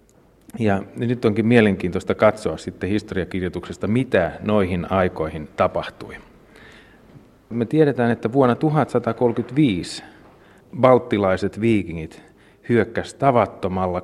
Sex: male